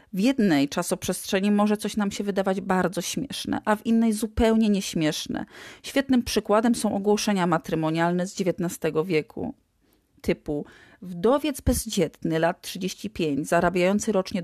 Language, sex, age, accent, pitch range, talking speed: Polish, female, 40-59, native, 175-225 Hz, 125 wpm